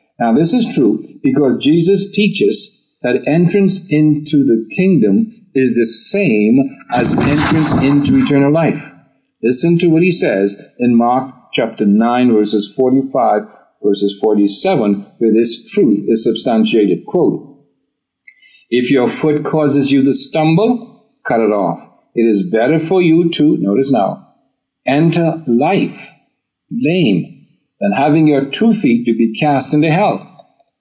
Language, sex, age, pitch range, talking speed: English, male, 50-69, 125-180 Hz, 135 wpm